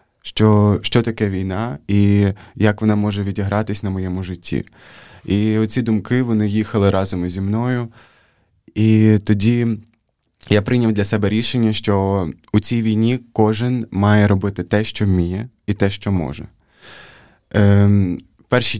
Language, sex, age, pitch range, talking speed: Ukrainian, male, 20-39, 95-110 Hz, 135 wpm